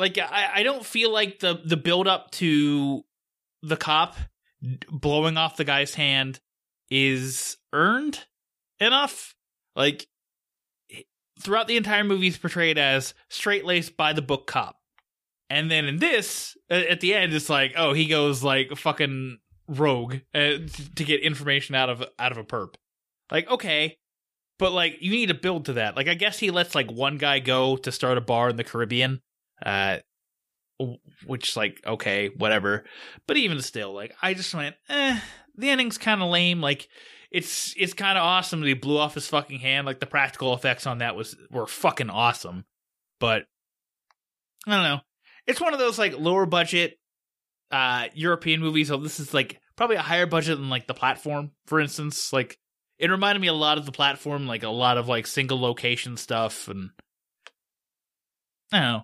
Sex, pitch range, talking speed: male, 130-180 Hz, 175 wpm